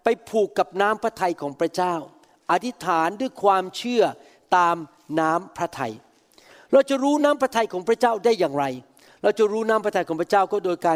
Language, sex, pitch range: Thai, male, 175-240 Hz